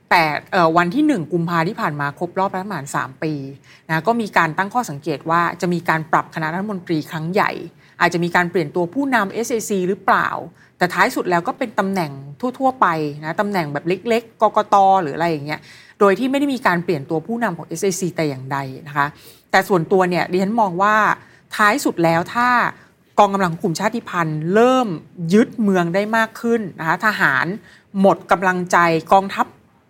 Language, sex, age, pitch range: Thai, female, 30-49, 160-210 Hz